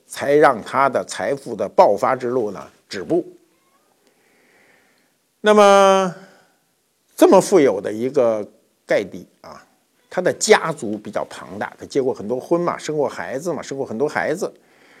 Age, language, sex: 50-69, Chinese, male